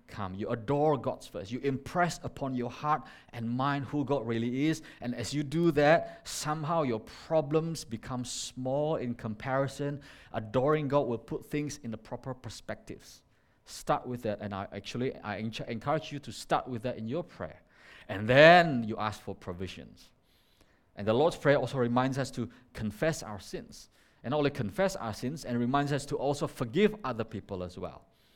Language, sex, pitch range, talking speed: English, male, 110-140 Hz, 180 wpm